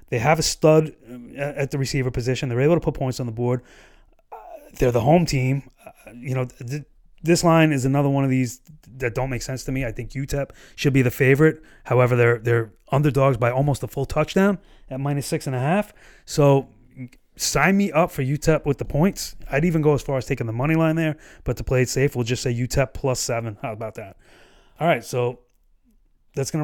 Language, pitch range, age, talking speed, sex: English, 130-155 Hz, 30-49, 215 wpm, male